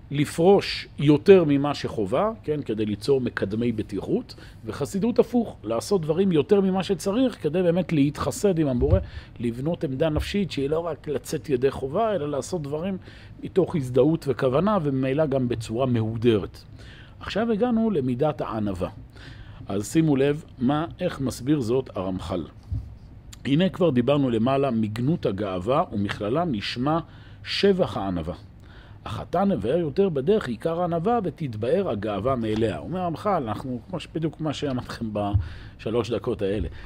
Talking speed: 130 wpm